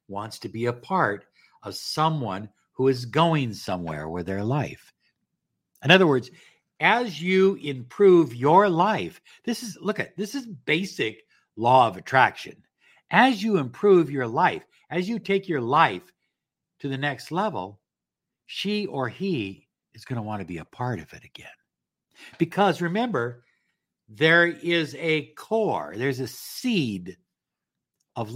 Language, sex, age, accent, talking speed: English, male, 60-79, American, 150 wpm